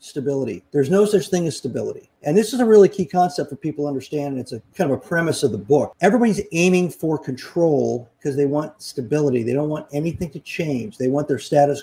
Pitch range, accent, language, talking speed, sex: 140-180 Hz, American, English, 235 wpm, male